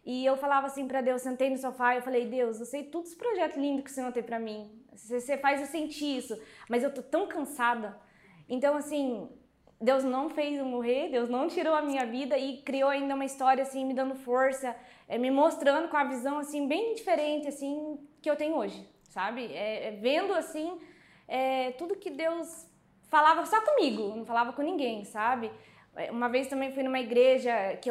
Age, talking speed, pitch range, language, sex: 20-39, 200 wpm, 240-290 Hz, Portuguese, female